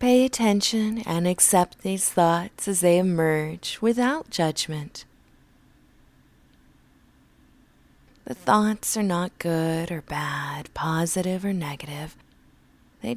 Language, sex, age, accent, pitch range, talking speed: English, female, 20-39, American, 165-220 Hz, 100 wpm